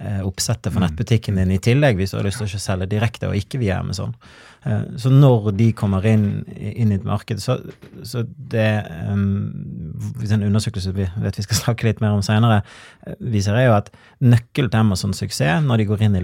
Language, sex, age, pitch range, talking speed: English, male, 30-49, 100-115 Hz, 195 wpm